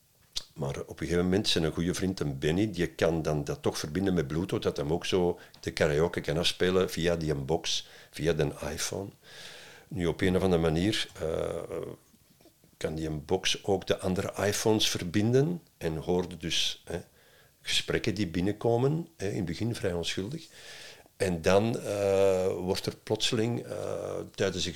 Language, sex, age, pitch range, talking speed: Dutch, male, 50-69, 80-100 Hz, 170 wpm